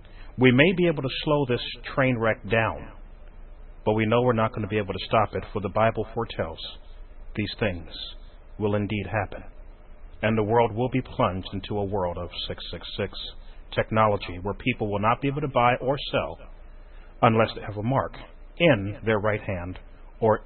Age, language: 40-59, English